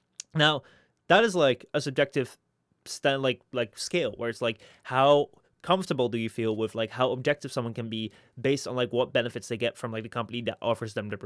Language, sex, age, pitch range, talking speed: English, male, 20-39, 120-155 Hz, 215 wpm